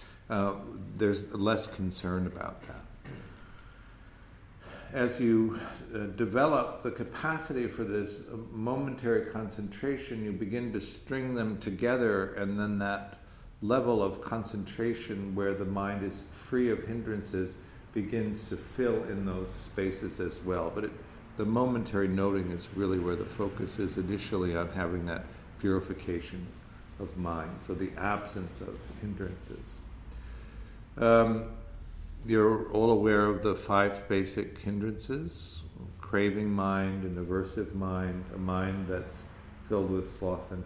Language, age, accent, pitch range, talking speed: English, 60-79, American, 95-110 Hz, 125 wpm